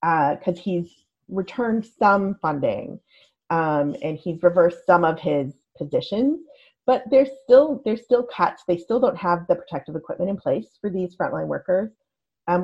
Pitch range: 160-225 Hz